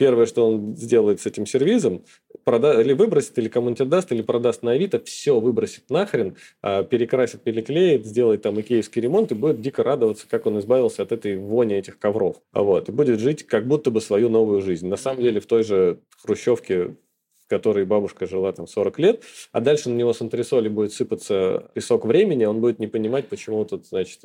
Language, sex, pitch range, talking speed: Russian, male, 100-130 Hz, 195 wpm